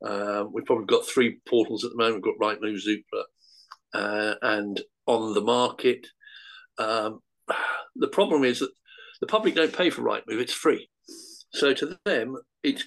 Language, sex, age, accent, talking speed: English, male, 50-69, British, 165 wpm